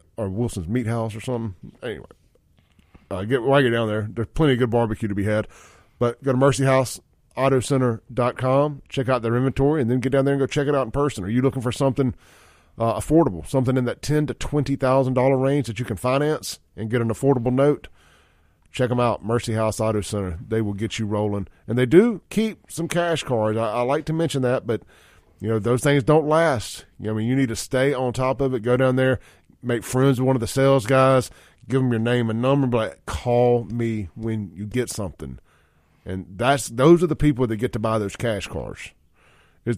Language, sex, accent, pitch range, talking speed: English, male, American, 105-130 Hz, 220 wpm